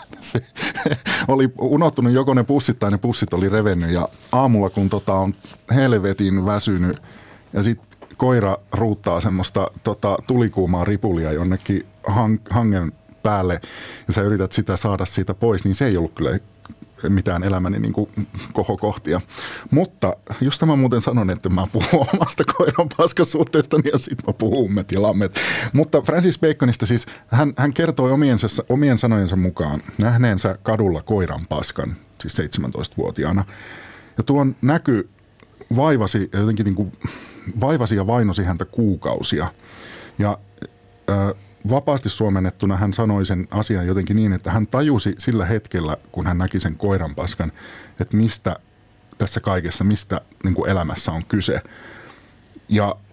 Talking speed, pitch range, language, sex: 140 wpm, 95-120 Hz, Finnish, male